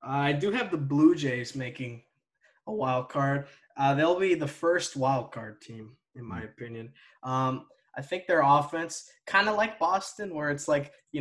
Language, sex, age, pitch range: English, male, 10-29, 135-155 Hz